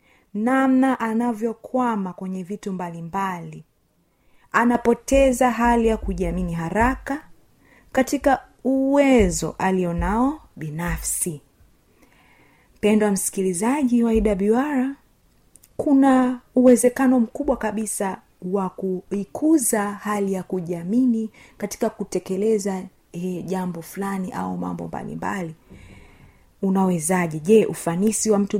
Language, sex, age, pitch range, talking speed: Swahili, female, 30-49, 185-235 Hz, 85 wpm